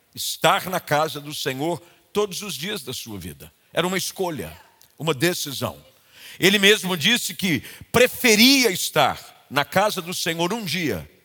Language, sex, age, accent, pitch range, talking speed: Portuguese, male, 50-69, Brazilian, 155-215 Hz, 150 wpm